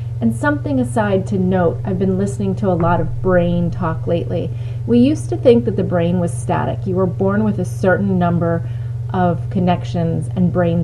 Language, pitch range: English, 110-135 Hz